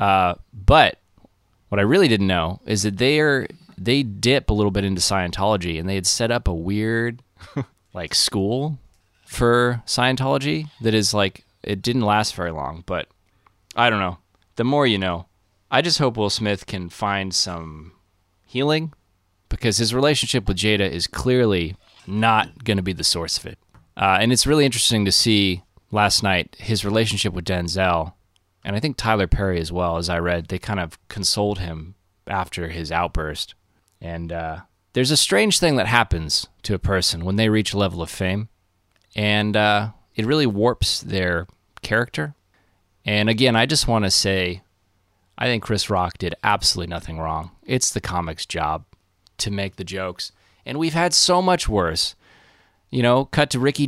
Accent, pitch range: American, 90-115 Hz